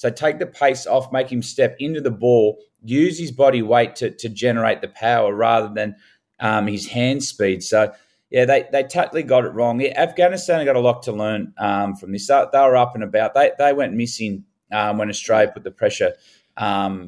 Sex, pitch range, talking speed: male, 110-130 Hz, 215 wpm